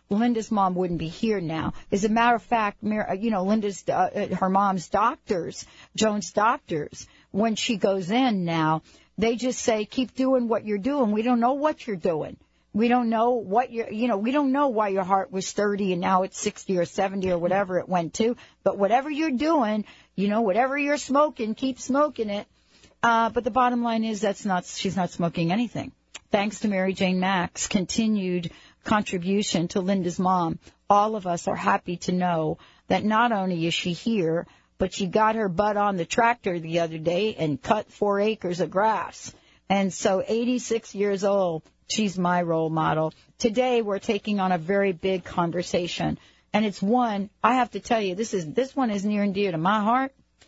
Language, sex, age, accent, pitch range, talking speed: English, female, 60-79, American, 185-230 Hz, 195 wpm